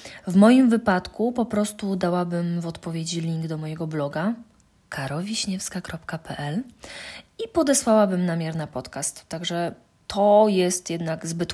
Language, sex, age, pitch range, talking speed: Polish, female, 20-39, 175-230 Hz, 120 wpm